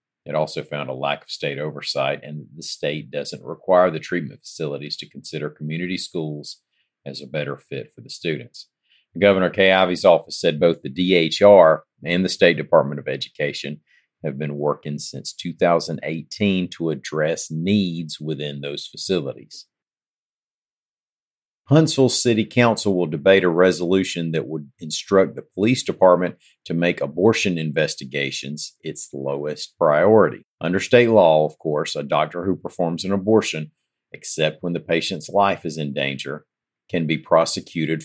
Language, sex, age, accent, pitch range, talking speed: English, male, 50-69, American, 75-95 Hz, 150 wpm